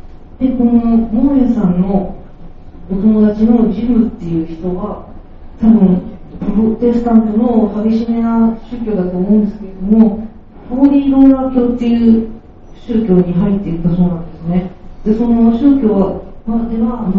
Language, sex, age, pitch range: Japanese, female, 40-59, 185-230 Hz